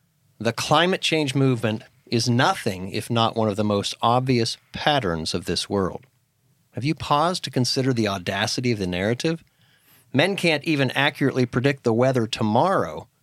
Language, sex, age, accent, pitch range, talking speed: English, male, 40-59, American, 115-140 Hz, 160 wpm